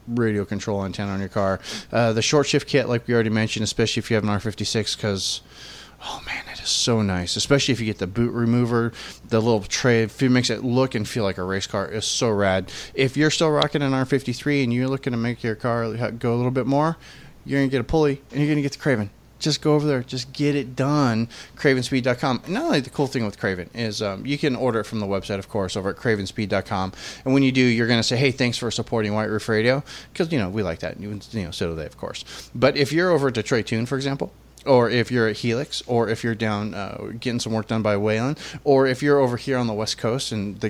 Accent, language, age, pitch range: American, English, 20-39, 110-145 Hz